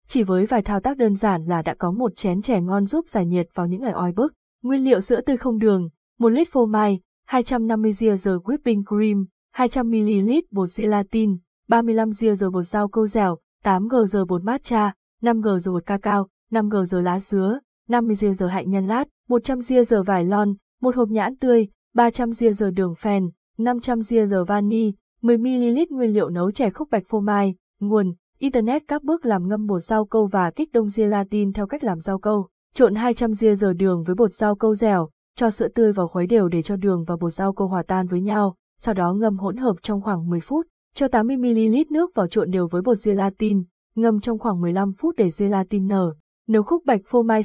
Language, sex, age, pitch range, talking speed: Vietnamese, female, 20-39, 190-235 Hz, 215 wpm